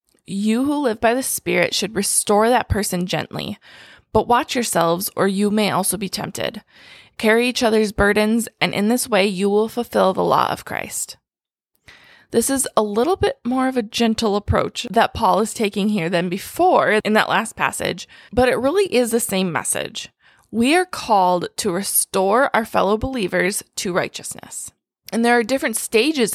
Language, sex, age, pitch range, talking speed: English, female, 20-39, 195-235 Hz, 180 wpm